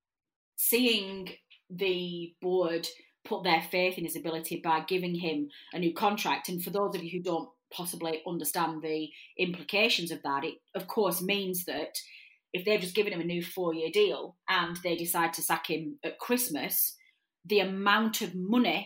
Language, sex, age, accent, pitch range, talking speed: English, female, 30-49, British, 165-205 Hz, 170 wpm